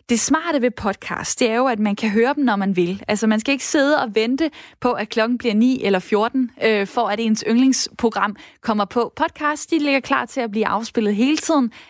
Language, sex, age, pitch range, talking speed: Danish, female, 20-39, 205-255 Hz, 230 wpm